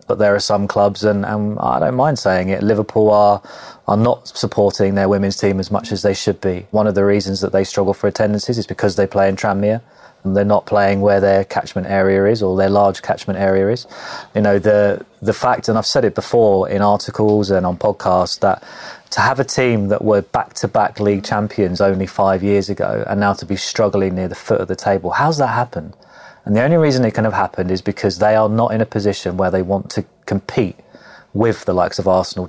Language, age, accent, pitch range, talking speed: English, 30-49, British, 95-110 Hz, 230 wpm